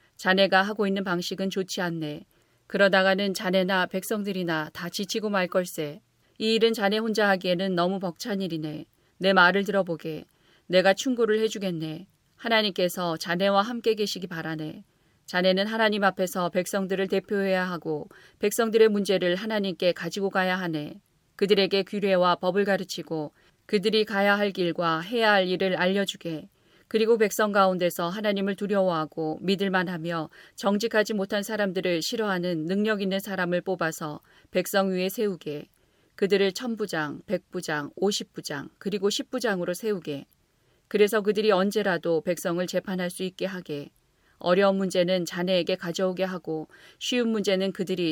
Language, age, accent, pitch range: Korean, 40-59, native, 175-205 Hz